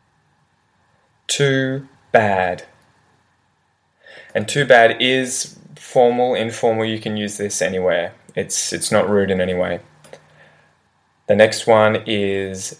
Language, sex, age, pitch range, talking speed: English, male, 20-39, 100-130 Hz, 115 wpm